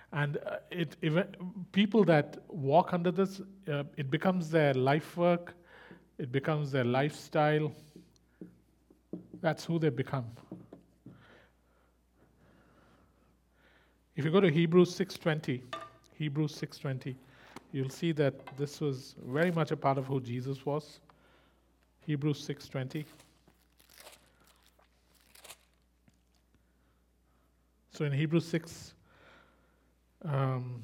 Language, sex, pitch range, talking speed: English, male, 125-160 Hz, 95 wpm